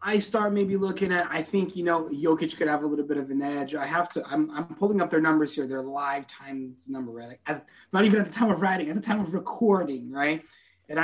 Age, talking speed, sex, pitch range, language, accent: 30-49, 255 wpm, male, 145-195 Hz, English, American